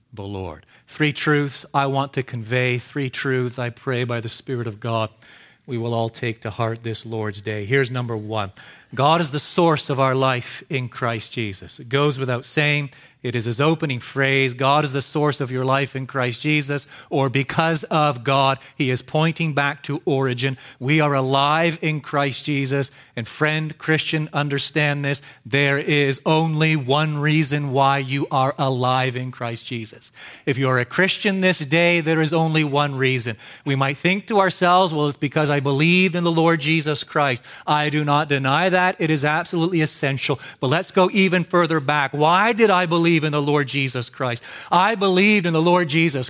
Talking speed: 190 wpm